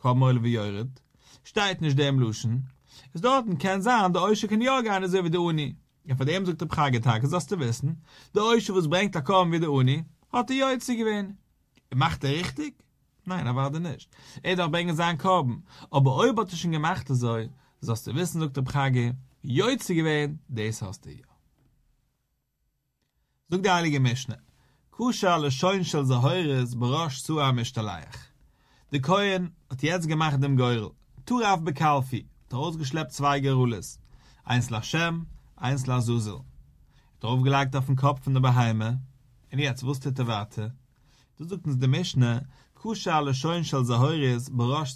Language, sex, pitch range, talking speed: English, male, 130-170 Hz, 185 wpm